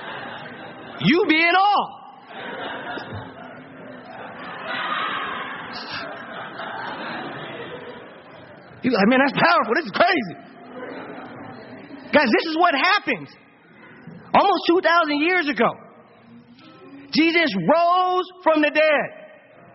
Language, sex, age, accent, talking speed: English, male, 40-59, American, 75 wpm